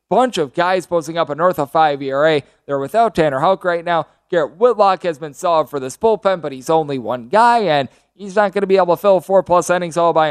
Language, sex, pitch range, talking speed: English, male, 150-195 Hz, 245 wpm